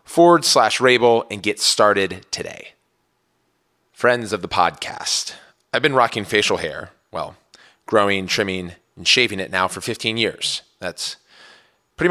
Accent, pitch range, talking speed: American, 105-160 Hz, 140 wpm